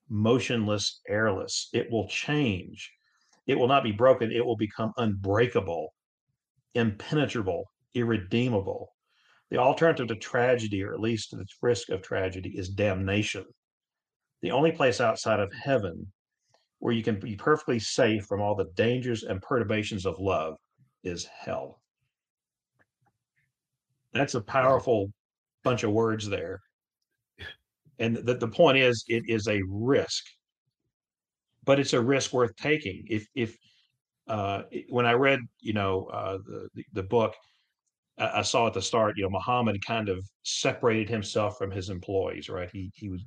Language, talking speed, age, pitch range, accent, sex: English, 145 wpm, 50-69, 100-125 Hz, American, male